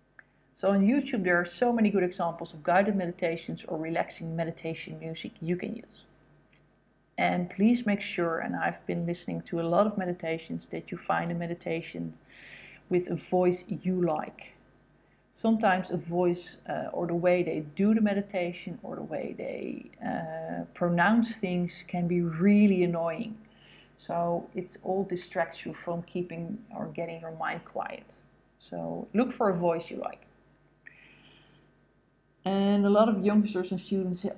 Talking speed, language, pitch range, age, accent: 160 wpm, English, 170-200 Hz, 40-59, Dutch